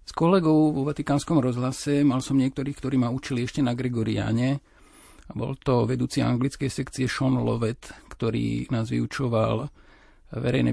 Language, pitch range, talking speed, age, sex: Slovak, 110-130 Hz, 140 wpm, 50-69, male